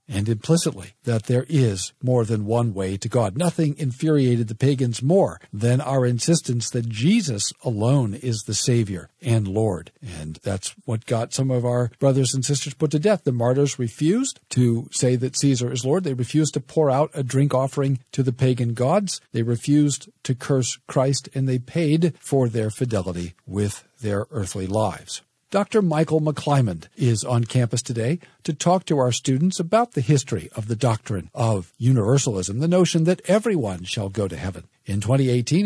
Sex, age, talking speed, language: male, 50-69, 180 wpm, English